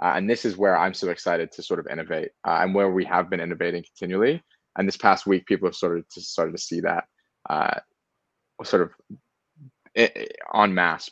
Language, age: English, 20-39